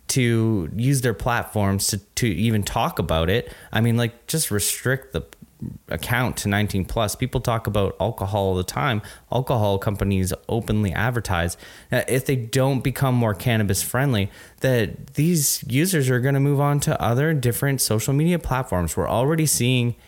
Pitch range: 100-125 Hz